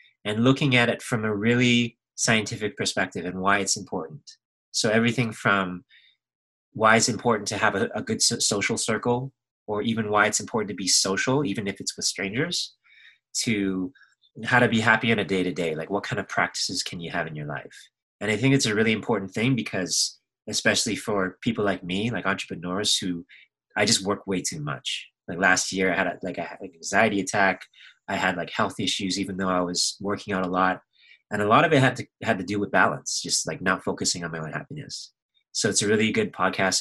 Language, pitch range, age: English, 90-120 Hz, 30-49